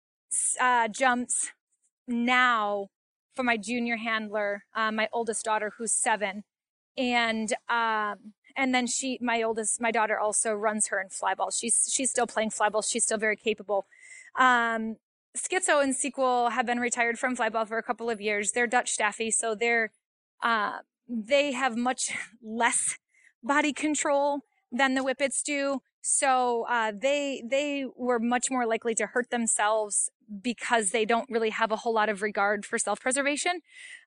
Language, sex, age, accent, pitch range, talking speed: English, female, 20-39, American, 220-255 Hz, 155 wpm